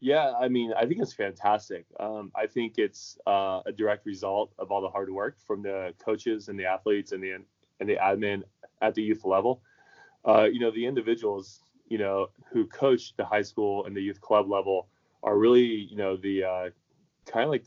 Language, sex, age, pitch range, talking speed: English, male, 20-39, 95-110 Hz, 205 wpm